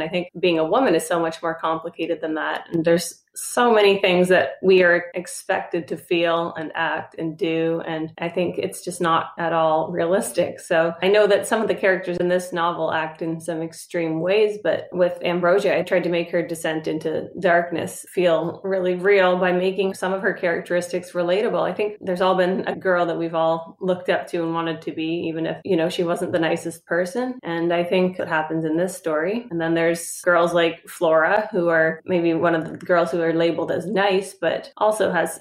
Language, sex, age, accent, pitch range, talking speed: English, female, 30-49, American, 165-185 Hz, 215 wpm